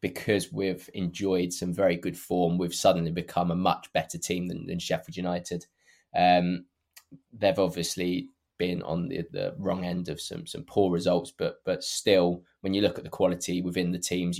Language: English